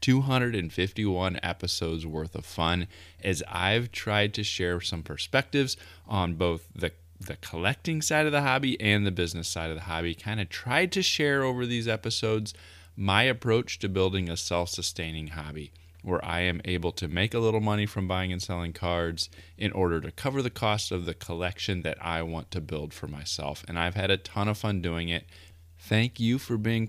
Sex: male